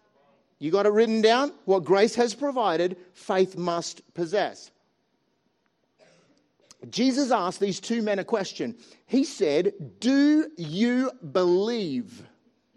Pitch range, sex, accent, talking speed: 205-260 Hz, male, Australian, 115 wpm